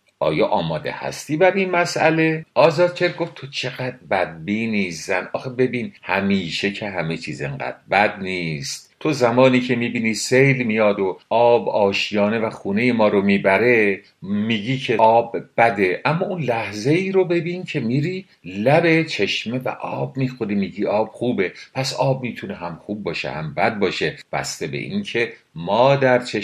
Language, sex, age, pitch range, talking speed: English, male, 50-69, 100-145 Hz, 165 wpm